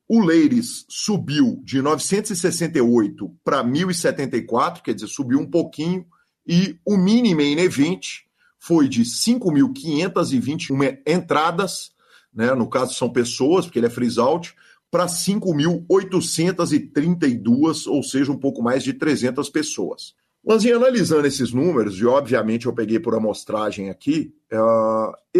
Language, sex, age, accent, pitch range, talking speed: Portuguese, male, 40-59, Brazilian, 145-210 Hz, 130 wpm